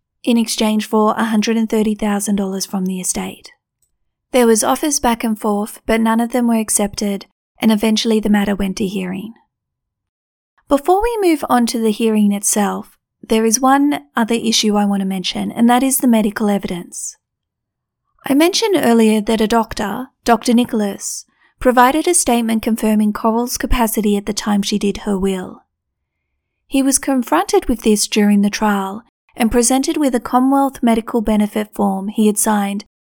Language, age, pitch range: English, 40-59, 205-250 Hz